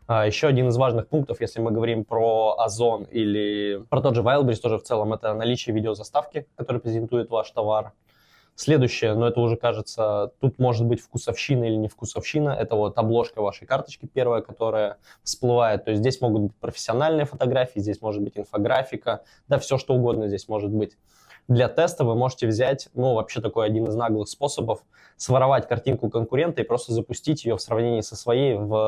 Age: 20-39